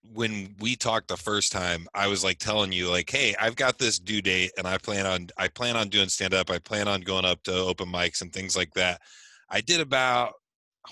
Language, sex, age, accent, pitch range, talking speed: English, male, 20-39, American, 95-110 Hz, 235 wpm